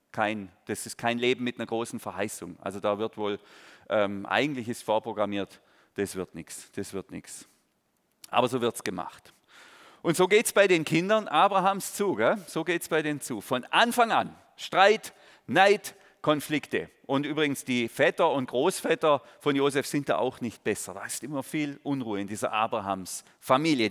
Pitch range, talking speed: 105-155 Hz, 175 wpm